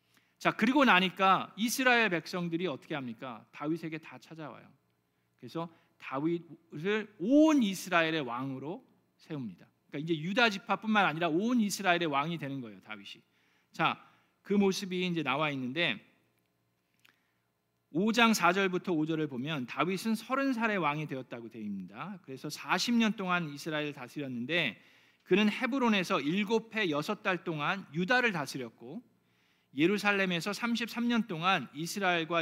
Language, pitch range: Korean, 140-205 Hz